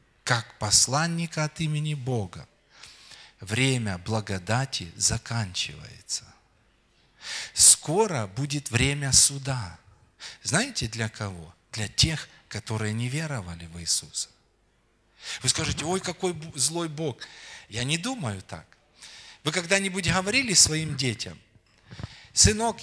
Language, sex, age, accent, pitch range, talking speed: Russian, male, 40-59, native, 110-160 Hz, 100 wpm